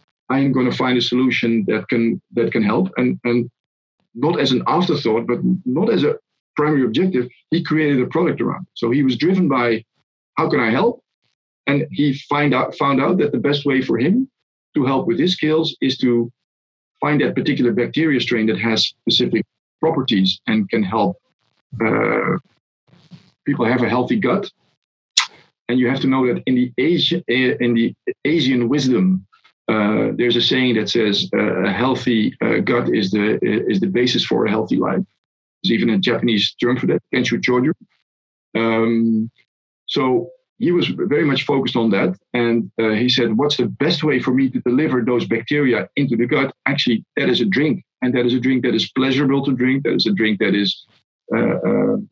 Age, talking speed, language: 50-69, 190 wpm, English